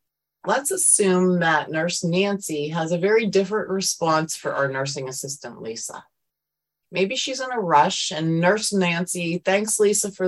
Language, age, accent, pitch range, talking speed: English, 30-49, American, 150-200 Hz, 150 wpm